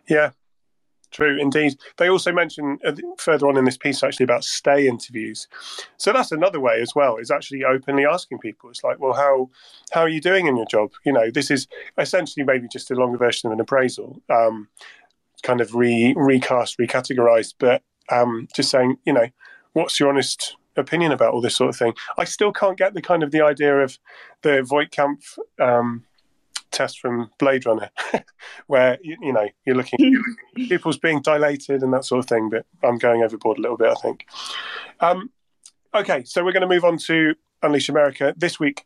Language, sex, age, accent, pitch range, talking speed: English, male, 30-49, British, 125-150 Hz, 195 wpm